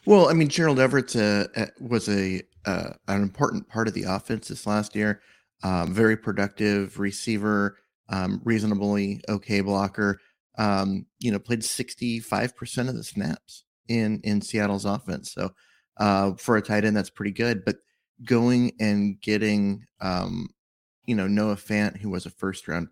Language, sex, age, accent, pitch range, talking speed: English, male, 30-49, American, 100-110 Hz, 155 wpm